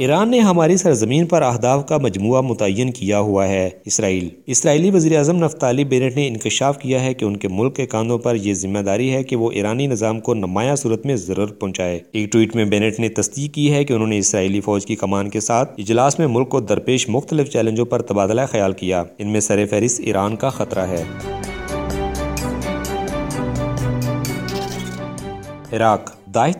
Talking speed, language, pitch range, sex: 110 wpm, English, 100-130 Hz, male